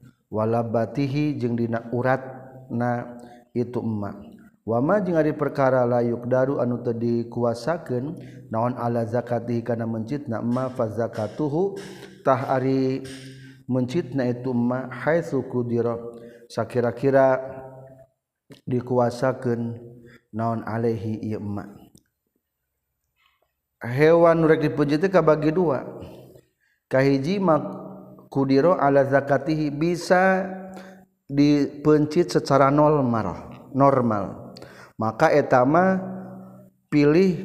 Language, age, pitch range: Indonesian, 50-69, 115-140 Hz